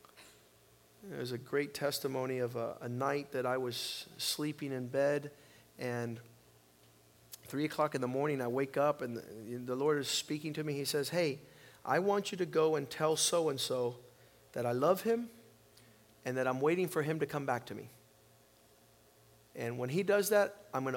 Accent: American